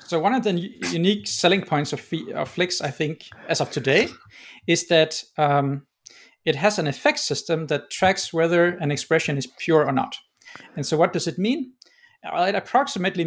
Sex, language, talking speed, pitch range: male, English, 180 wpm, 145-185 Hz